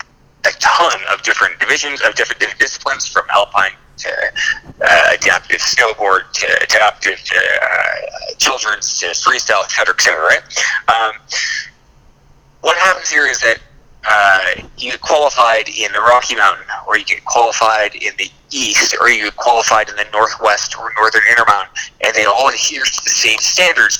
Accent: American